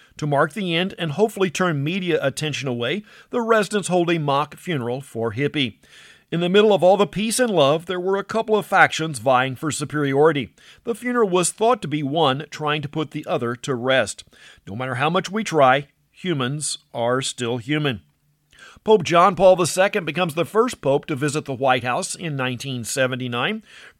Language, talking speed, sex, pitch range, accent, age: English, 190 wpm, male, 140-190 Hz, American, 50-69